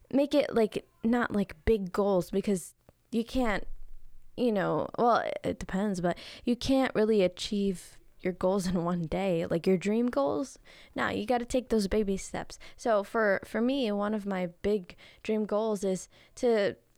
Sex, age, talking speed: female, 10-29, 175 wpm